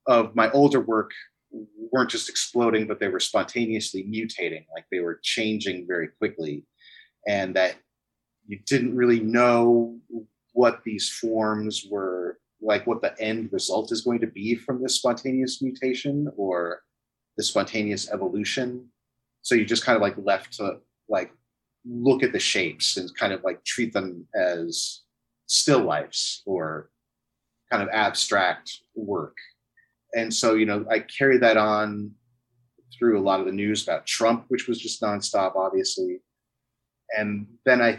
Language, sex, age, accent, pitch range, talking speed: English, male, 30-49, American, 105-130 Hz, 150 wpm